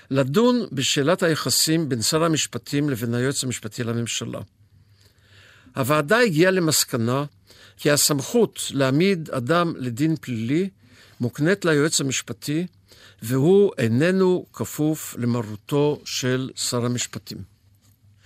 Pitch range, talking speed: 115-165 Hz, 95 wpm